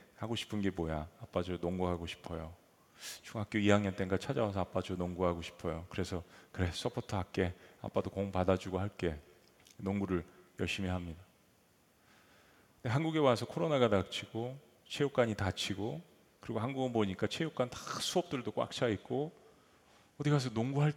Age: 30-49